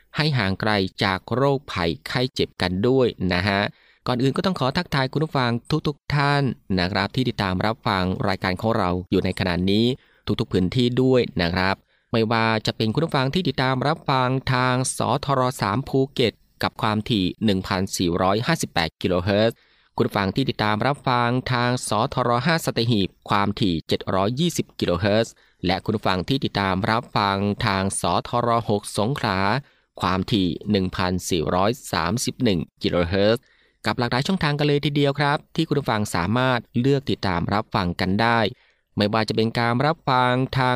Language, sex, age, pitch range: Thai, male, 20-39, 100-130 Hz